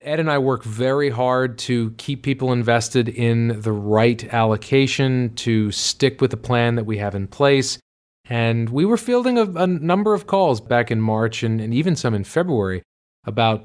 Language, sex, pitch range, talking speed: English, male, 110-130 Hz, 190 wpm